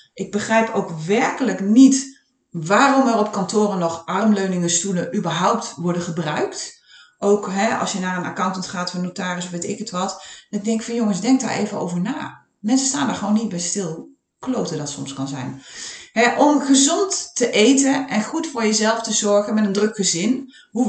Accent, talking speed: Dutch, 195 wpm